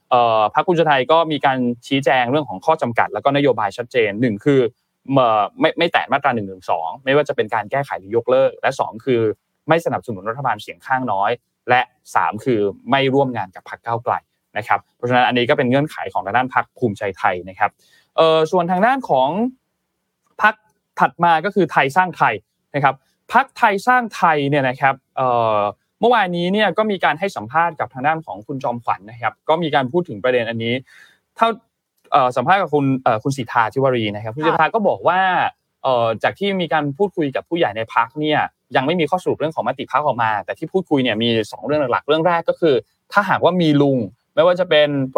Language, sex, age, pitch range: Thai, male, 20-39, 125-180 Hz